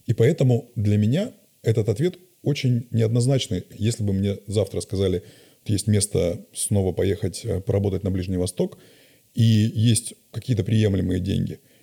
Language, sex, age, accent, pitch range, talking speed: Russian, male, 30-49, native, 100-125 Hz, 135 wpm